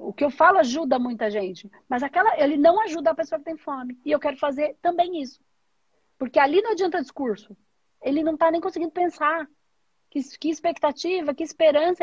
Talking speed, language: 195 wpm, Portuguese